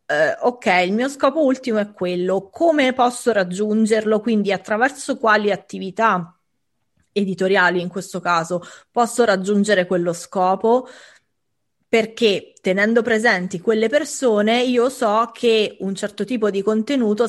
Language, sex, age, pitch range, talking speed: English, female, 20-39, 190-235 Hz, 120 wpm